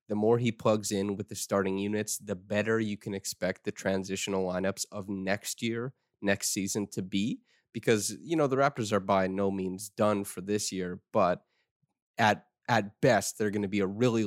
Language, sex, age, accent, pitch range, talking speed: English, male, 20-39, American, 100-115 Hz, 200 wpm